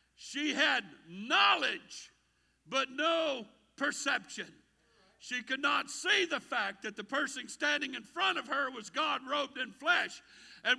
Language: English